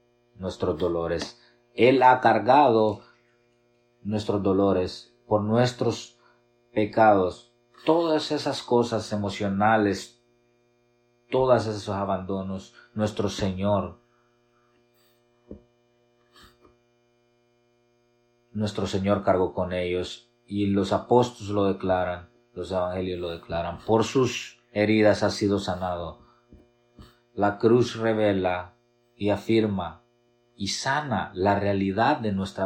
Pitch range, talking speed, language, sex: 100-120 Hz, 90 wpm, English, male